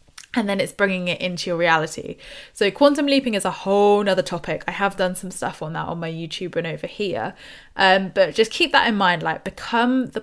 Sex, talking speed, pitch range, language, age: female, 230 wpm, 180-230 Hz, English, 10-29